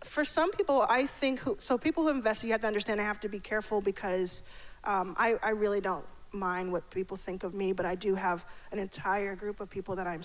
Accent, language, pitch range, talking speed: American, English, 185-230 Hz, 245 wpm